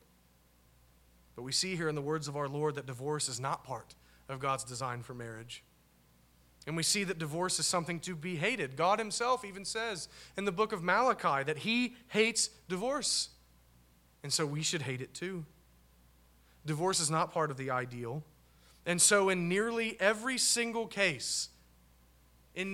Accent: American